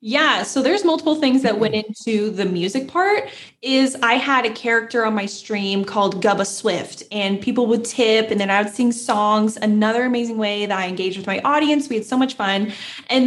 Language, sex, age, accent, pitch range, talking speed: English, female, 10-29, American, 210-265 Hz, 215 wpm